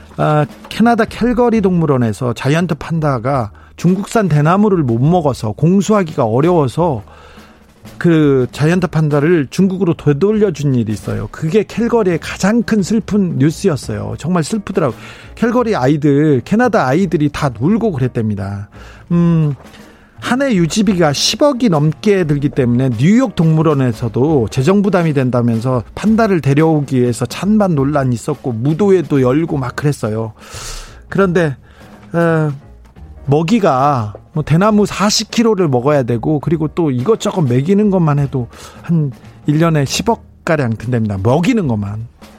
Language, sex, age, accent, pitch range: Korean, male, 40-59, native, 125-185 Hz